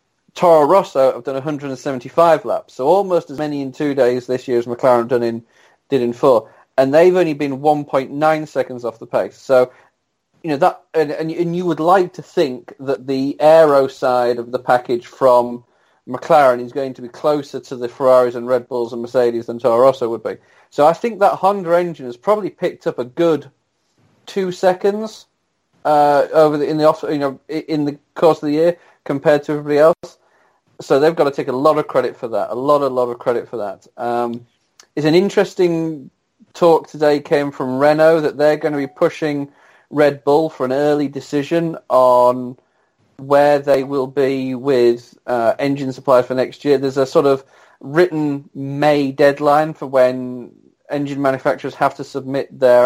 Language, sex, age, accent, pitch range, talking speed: English, male, 30-49, British, 125-155 Hz, 190 wpm